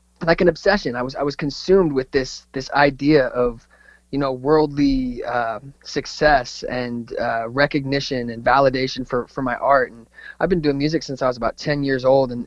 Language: English